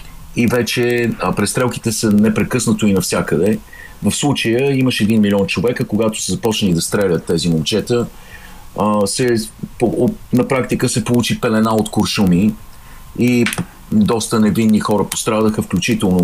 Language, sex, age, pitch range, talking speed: Bulgarian, male, 40-59, 90-115 Hz, 140 wpm